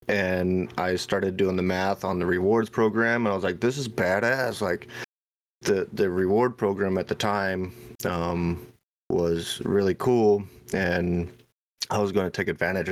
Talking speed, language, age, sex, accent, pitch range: 165 wpm, English, 30-49, male, American, 90-110 Hz